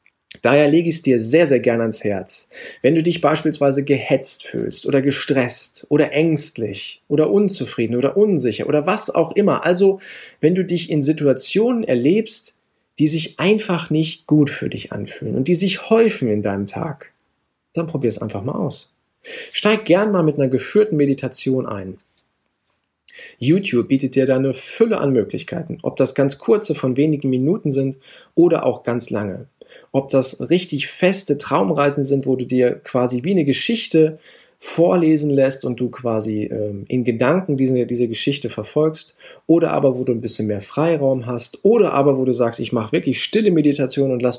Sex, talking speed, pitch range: male, 175 wpm, 125-160 Hz